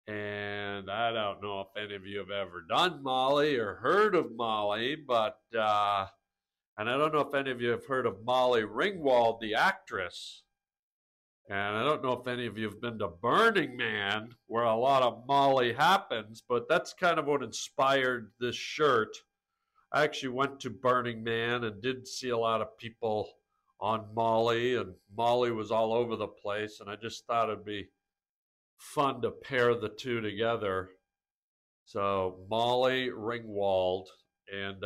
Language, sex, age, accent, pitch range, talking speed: English, male, 60-79, American, 105-125 Hz, 170 wpm